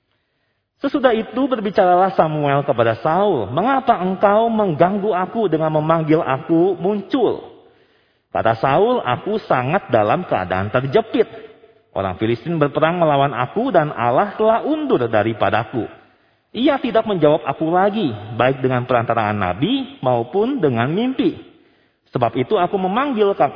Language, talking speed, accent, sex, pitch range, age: Indonesian, 120 wpm, native, male, 140-225 Hz, 40-59